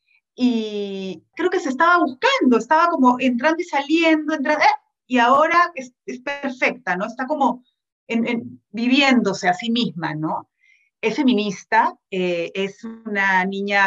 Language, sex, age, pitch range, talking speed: Spanish, female, 30-49, 190-280 Hz, 145 wpm